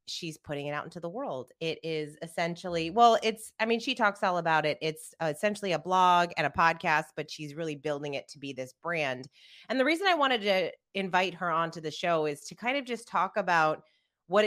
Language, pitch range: English, 155-215 Hz